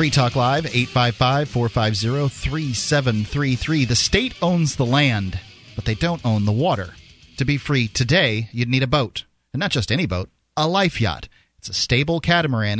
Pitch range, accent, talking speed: 110-140 Hz, American, 165 wpm